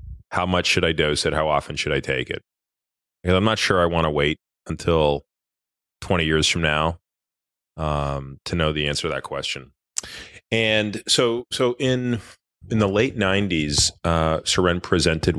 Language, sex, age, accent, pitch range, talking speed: English, male, 30-49, American, 75-90 Hz, 170 wpm